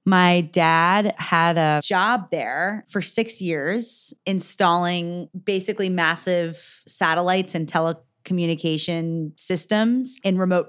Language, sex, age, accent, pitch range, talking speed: English, female, 20-39, American, 160-195 Hz, 100 wpm